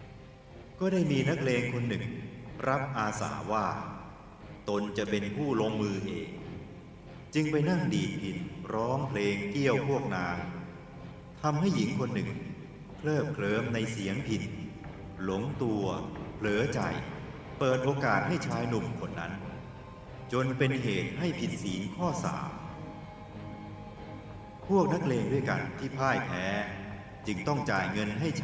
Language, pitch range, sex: Thai, 105-140 Hz, male